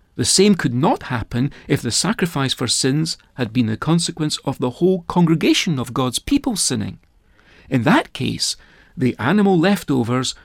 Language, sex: English, male